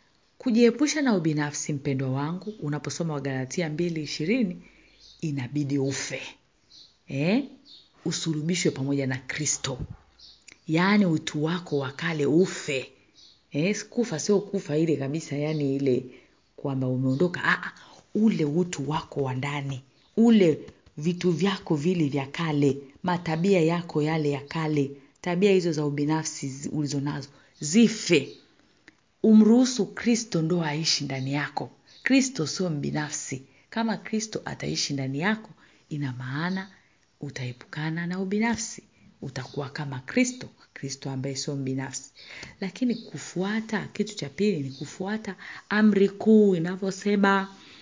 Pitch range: 145-195 Hz